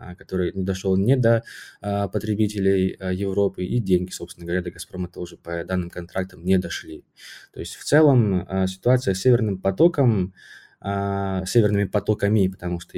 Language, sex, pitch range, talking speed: Russian, male, 90-105 Hz, 145 wpm